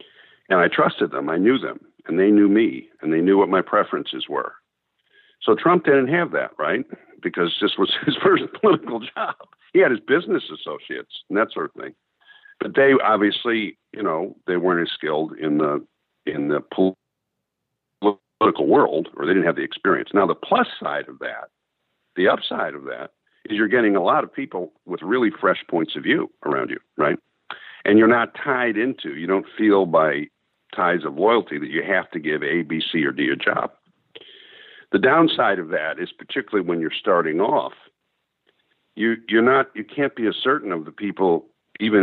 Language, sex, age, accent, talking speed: English, male, 60-79, American, 190 wpm